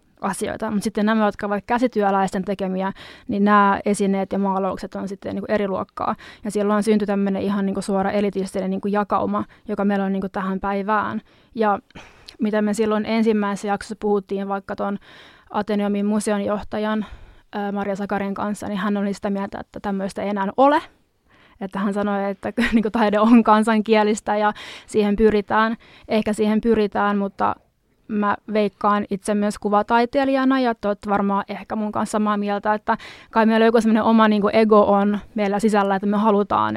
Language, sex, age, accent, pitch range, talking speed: Finnish, female, 20-39, native, 200-215 Hz, 160 wpm